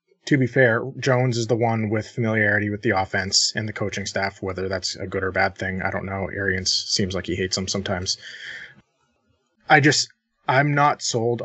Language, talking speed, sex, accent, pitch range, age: English, 200 wpm, male, American, 95-115 Hz, 20-39